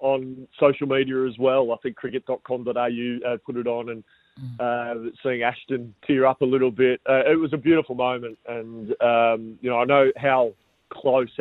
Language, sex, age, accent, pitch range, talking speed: English, male, 30-49, Australian, 120-135 Hz, 190 wpm